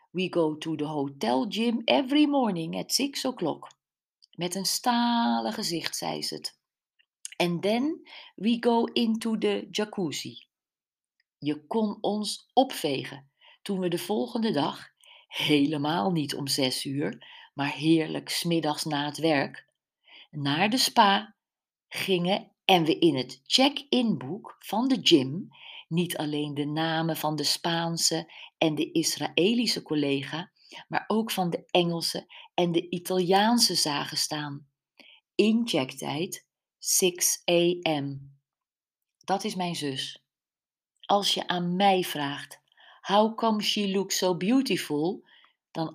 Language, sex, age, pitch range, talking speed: Dutch, female, 50-69, 150-210 Hz, 125 wpm